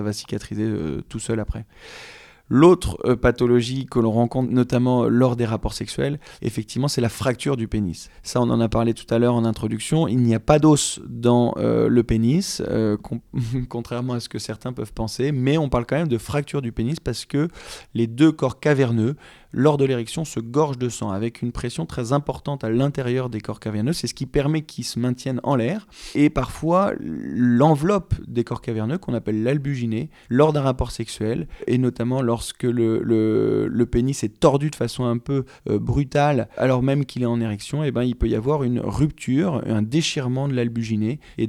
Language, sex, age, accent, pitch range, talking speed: French, male, 20-39, French, 115-140 Hz, 200 wpm